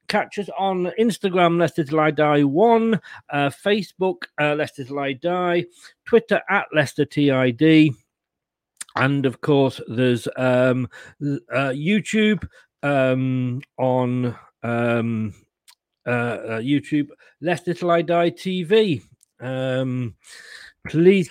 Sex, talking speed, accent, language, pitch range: male, 115 wpm, British, English, 125-170 Hz